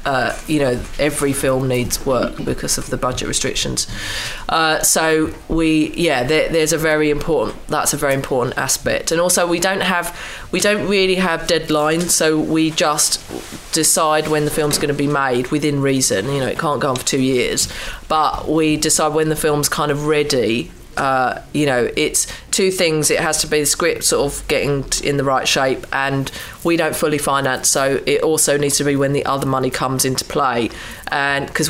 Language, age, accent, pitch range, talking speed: English, 20-39, British, 135-160 Hz, 200 wpm